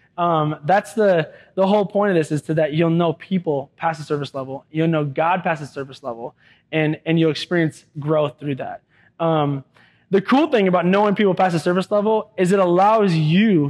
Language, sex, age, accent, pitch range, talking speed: English, male, 20-39, American, 155-190 Hz, 205 wpm